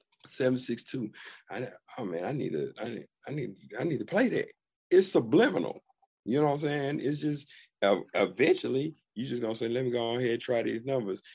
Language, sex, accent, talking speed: English, male, American, 210 wpm